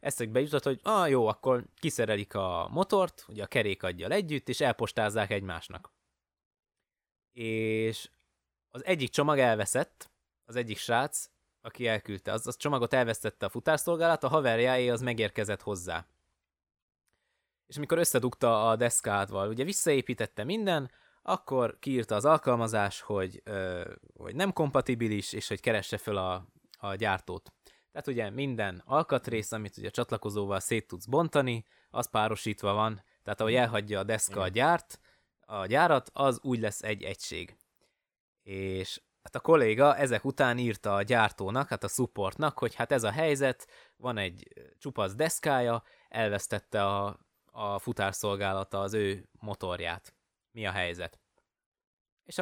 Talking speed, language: 140 wpm, Hungarian